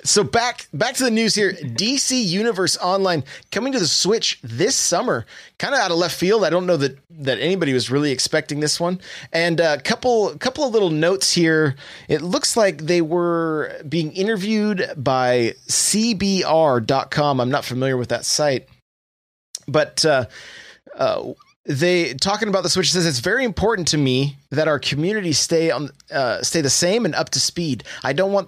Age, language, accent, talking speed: 30-49, English, American, 185 wpm